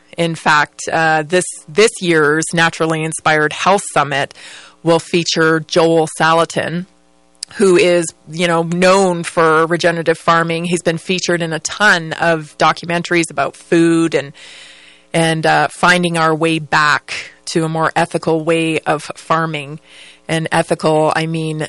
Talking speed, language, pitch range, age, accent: 140 wpm, English, 155-170 Hz, 30-49, American